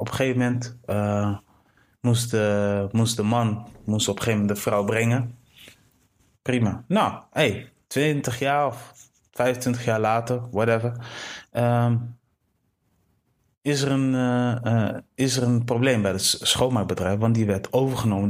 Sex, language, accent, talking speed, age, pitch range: male, Dutch, Dutch, 150 wpm, 20-39, 105-125 Hz